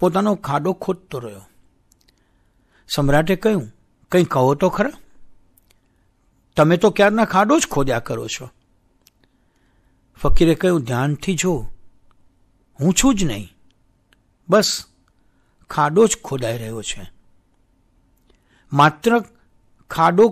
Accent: native